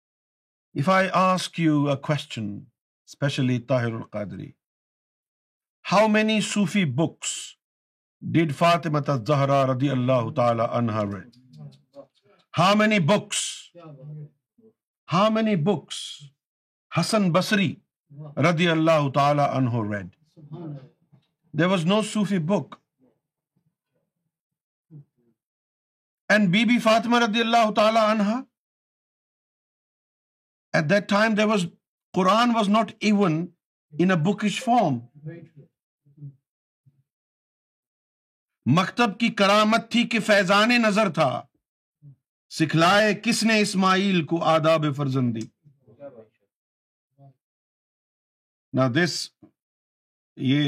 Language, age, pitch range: Urdu, 50-69, 135-190 Hz